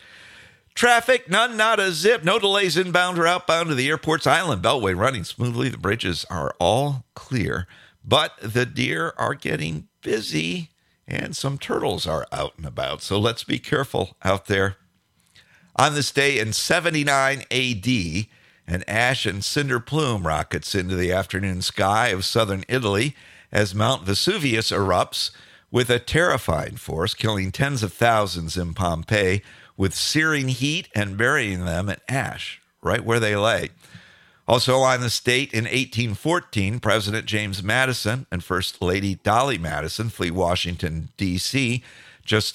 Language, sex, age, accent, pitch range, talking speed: English, male, 50-69, American, 95-130 Hz, 145 wpm